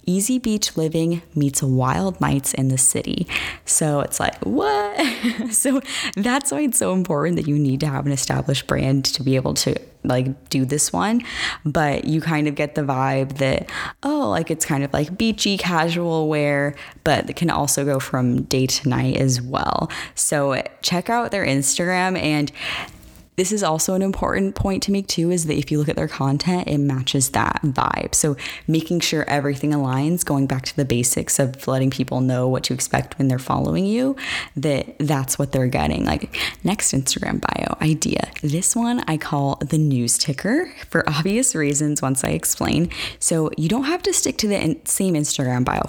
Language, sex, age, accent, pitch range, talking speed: English, female, 10-29, American, 135-195 Hz, 190 wpm